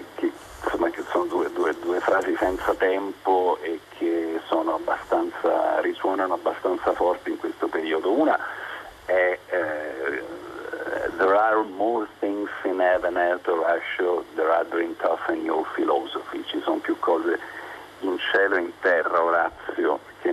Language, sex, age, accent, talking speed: Italian, male, 50-69, native, 140 wpm